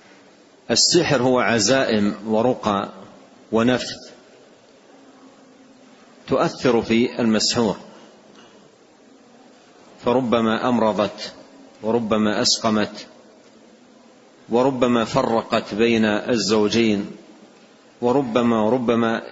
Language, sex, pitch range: Arabic, male, 105-130 Hz